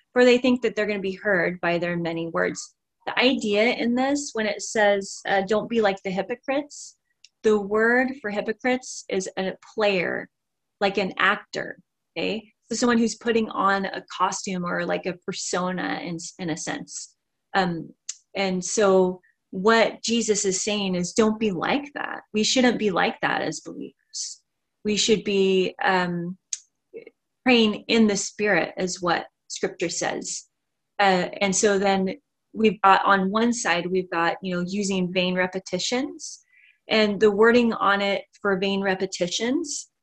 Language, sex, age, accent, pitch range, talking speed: English, female, 30-49, American, 185-230 Hz, 160 wpm